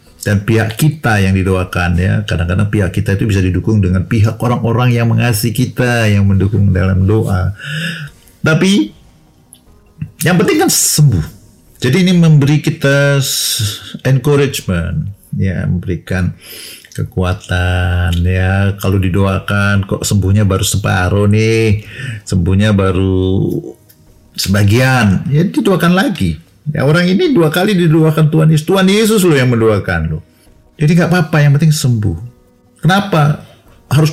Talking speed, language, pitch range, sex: 125 wpm, Indonesian, 100-155 Hz, male